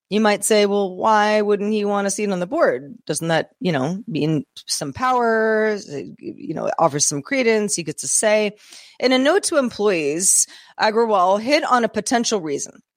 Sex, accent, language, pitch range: female, American, English, 180-235 Hz